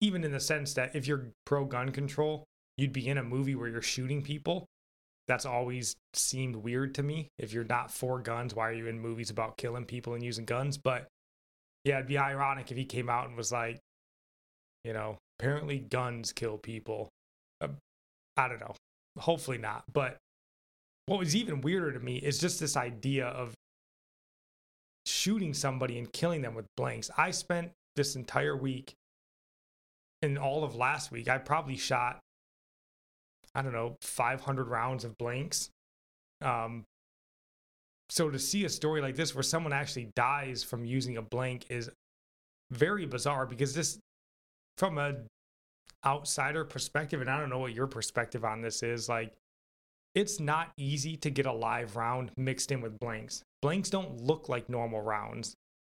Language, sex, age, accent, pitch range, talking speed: English, male, 20-39, American, 115-145 Hz, 165 wpm